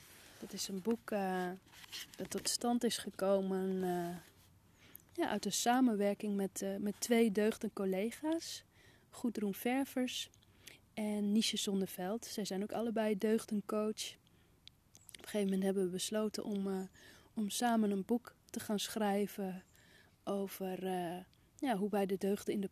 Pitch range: 190-215 Hz